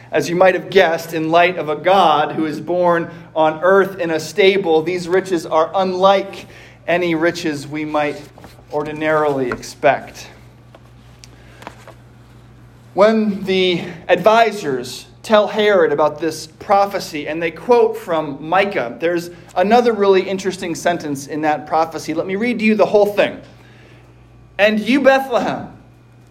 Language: English